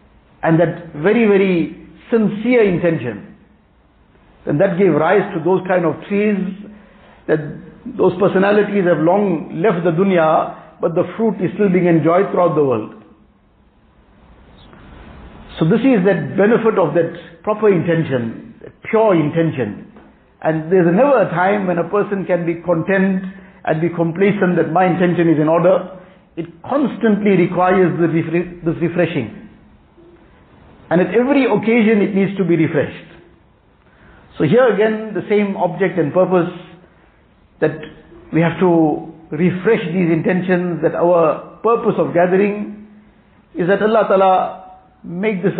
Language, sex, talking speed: English, male, 135 wpm